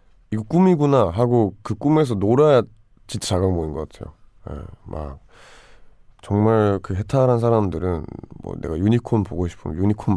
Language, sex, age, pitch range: Korean, male, 20-39, 90-115 Hz